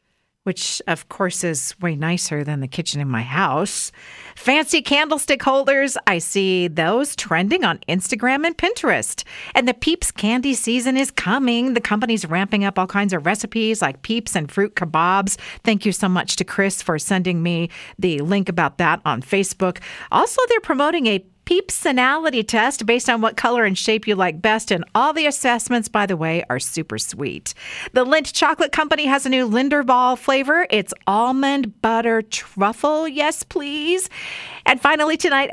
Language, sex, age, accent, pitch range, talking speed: English, female, 50-69, American, 185-275 Hz, 170 wpm